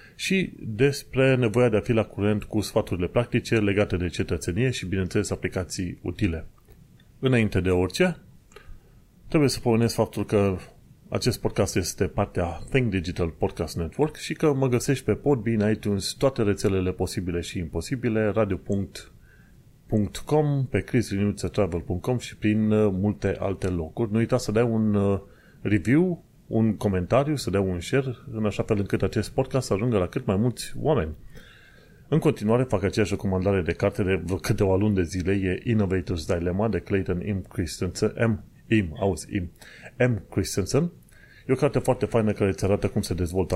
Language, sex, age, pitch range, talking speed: Romanian, male, 30-49, 95-120 Hz, 160 wpm